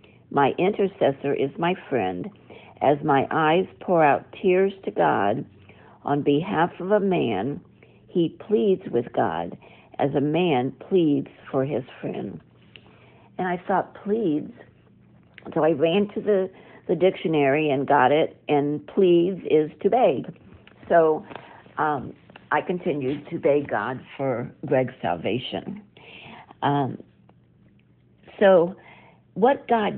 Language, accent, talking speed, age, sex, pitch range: English, American, 125 wpm, 60-79, female, 135-180 Hz